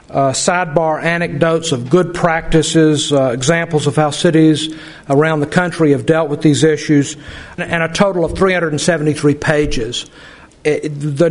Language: English